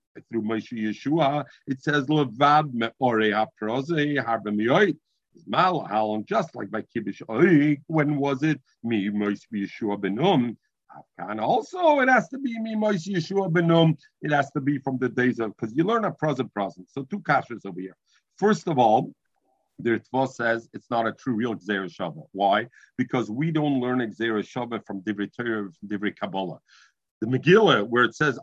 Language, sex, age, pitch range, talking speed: English, male, 50-69, 115-165 Hz, 155 wpm